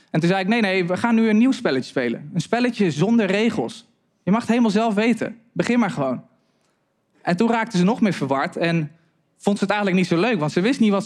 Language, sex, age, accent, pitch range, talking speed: Dutch, male, 20-39, Dutch, 170-215 Hz, 250 wpm